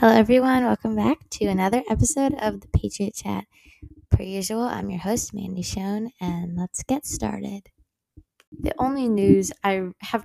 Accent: American